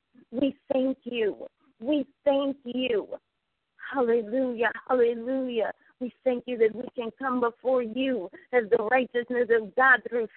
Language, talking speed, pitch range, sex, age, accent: English, 135 wpm, 240-280 Hz, female, 50-69, American